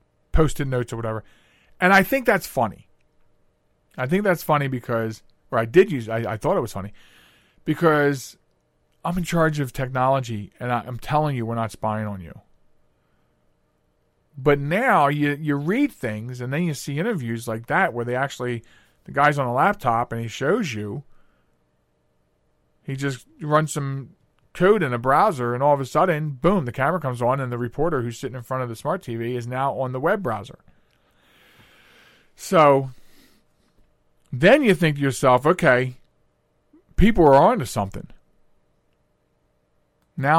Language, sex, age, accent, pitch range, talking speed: English, male, 40-59, American, 110-150 Hz, 165 wpm